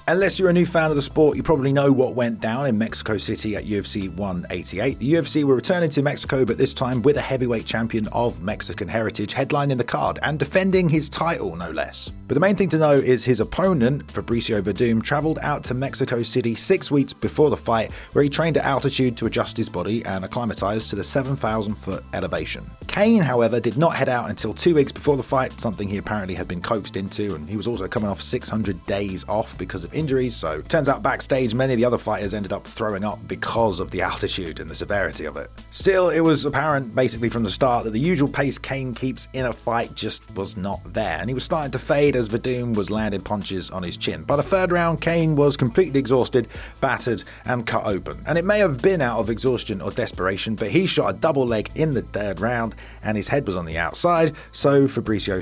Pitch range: 105-140 Hz